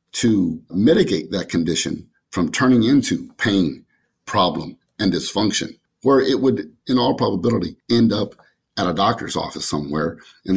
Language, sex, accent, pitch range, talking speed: English, male, American, 95-120 Hz, 140 wpm